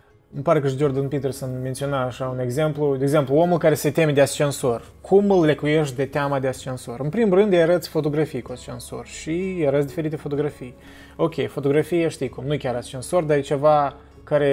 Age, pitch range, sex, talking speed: 20-39, 130-160 Hz, male, 205 wpm